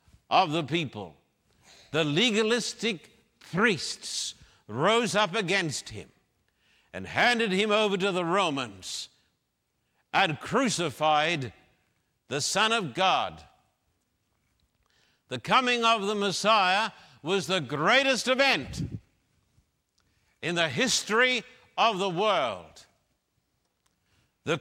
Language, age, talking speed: English, 60-79, 95 wpm